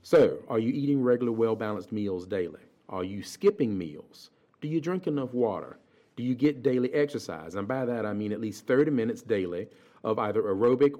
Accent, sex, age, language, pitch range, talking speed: American, male, 40-59, English, 110-145 Hz, 190 wpm